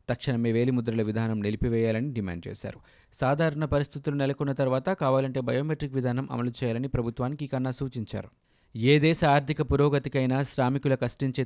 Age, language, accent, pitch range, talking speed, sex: 30-49, Telugu, native, 115-140 Hz, 125 wpm, male